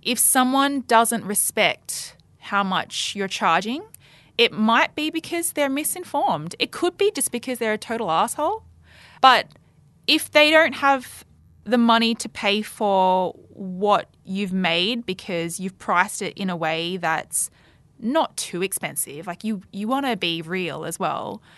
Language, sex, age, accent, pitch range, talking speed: English, female, 20-39, Australian, 185-245 Hz, 155 wpm